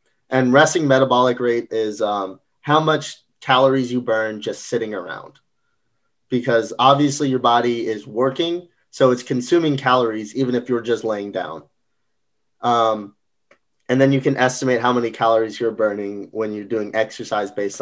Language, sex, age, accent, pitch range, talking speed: English, male, 20-39, American, 115-135 Hz, 155 wpm